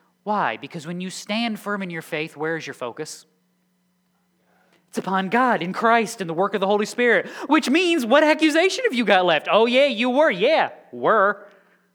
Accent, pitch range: American, 130-205 Hz